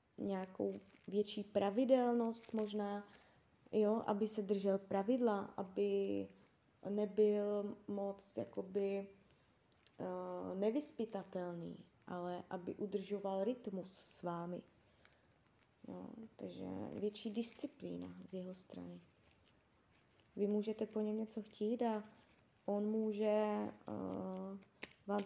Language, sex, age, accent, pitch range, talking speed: Czech, female, 20-39, native, 195-225 Hz, 80 wpm